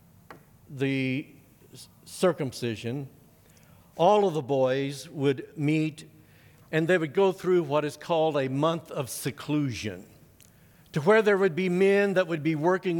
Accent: American